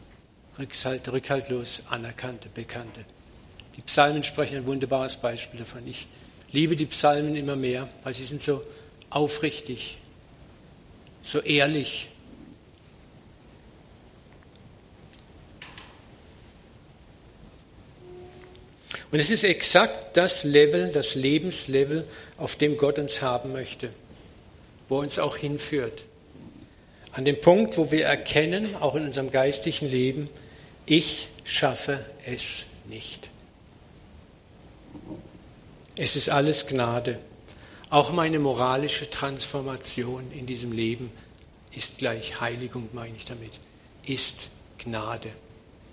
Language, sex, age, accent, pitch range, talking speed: German, male, 60-79, German, 115-145 Hz, 100 wpm